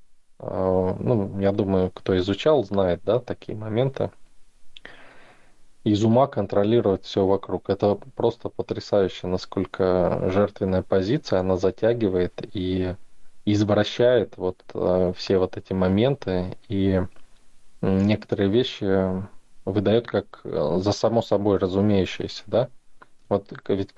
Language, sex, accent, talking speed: Russian, male, native, 105 wpm